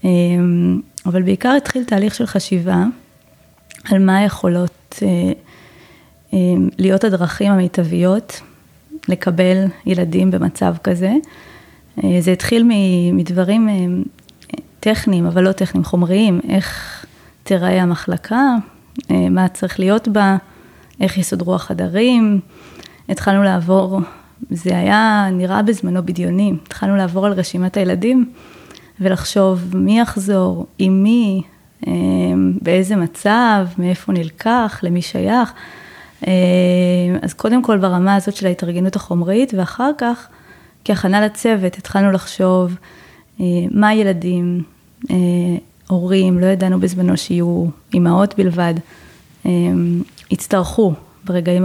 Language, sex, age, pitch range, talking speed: Hebrew, female, 20-39, 180-200 Hz, 95 wpm